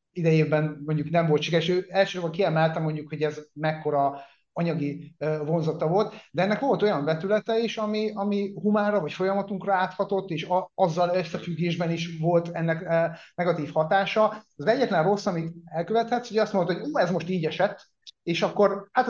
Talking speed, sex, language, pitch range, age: 165 wpm, male, Hungarian, 160-195 Hz, 30-49